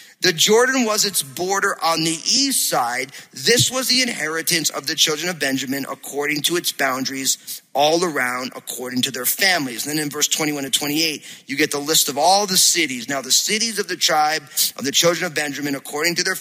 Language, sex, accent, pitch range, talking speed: English, male, American, 150-180 Hz, 210 wpm